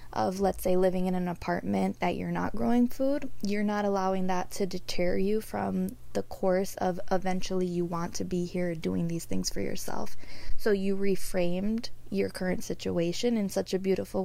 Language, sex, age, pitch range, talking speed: English, female, 20-39, 175-205 Hz, 185 wpm